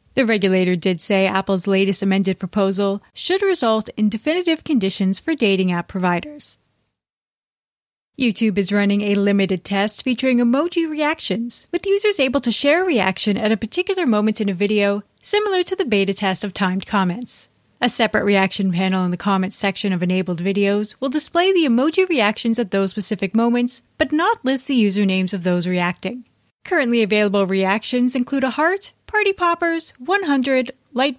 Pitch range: 195-265 Hz